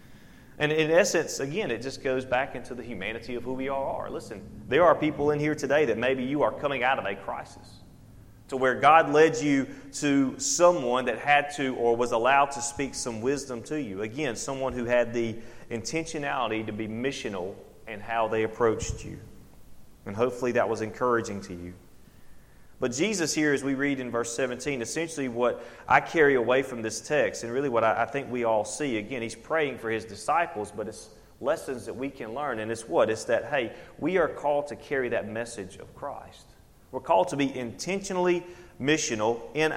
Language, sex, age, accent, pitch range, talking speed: English, male, 30-49, American, 115-145 Hz, 200 wpm